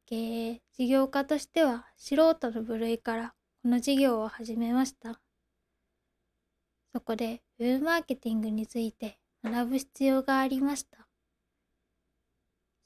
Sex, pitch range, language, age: female, 225-270 Hz, Japanese, 10-29